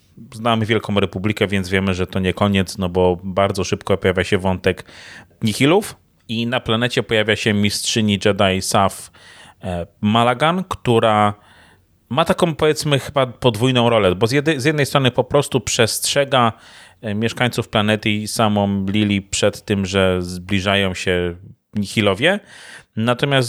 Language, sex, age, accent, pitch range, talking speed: Polish, male, 30-49, native, 95-125 Hz, 135 wpm